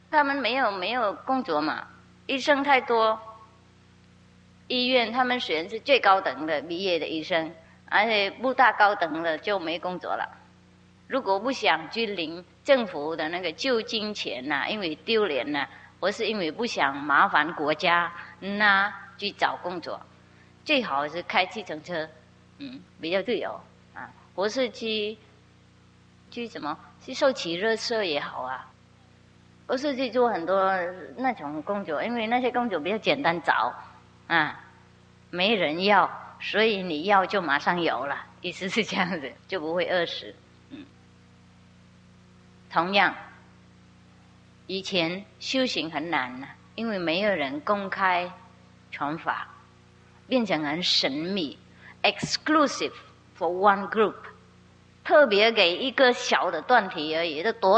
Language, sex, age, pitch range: English, female, 30-49, 145-225 Hz